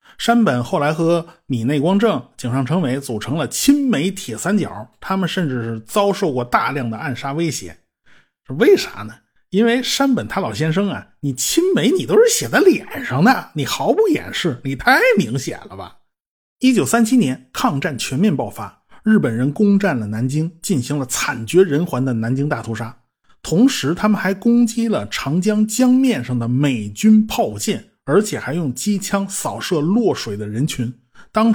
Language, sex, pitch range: Chinese, male, 130-205 Hz